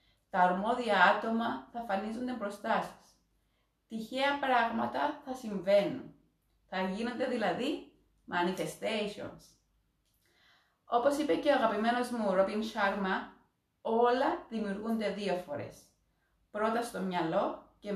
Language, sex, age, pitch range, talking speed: Greek, female, 30-49, 185-250 Hz, 105 wpm